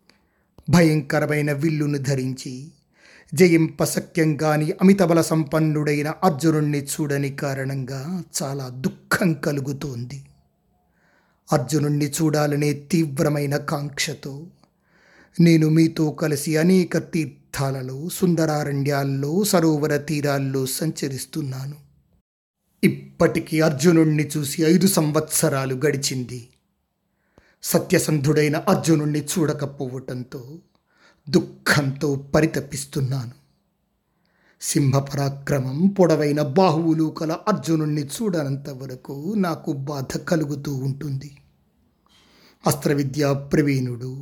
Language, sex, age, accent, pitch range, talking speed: Telugu, male, 30-49, native, 140-160 Hz, 70 wpm